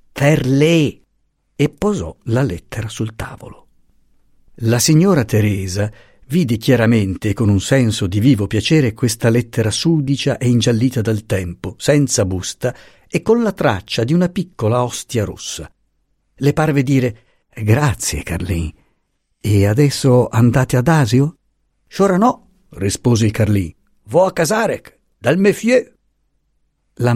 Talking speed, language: 125 wpm, Italian